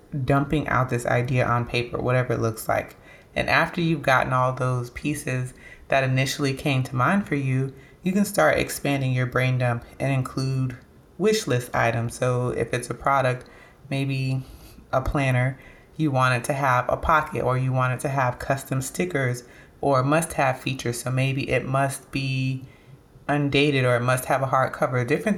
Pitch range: 125-150 Hz